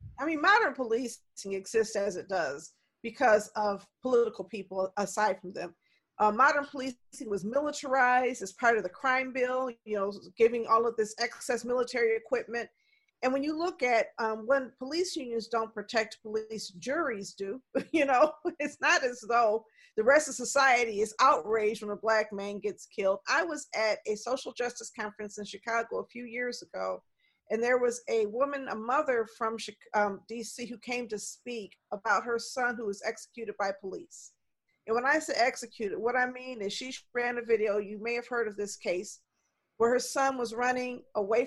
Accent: American